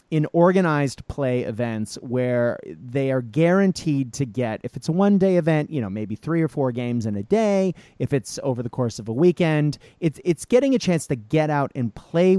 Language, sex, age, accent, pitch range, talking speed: English, male, 30-49, American, 120-170 Hz, 210 wpm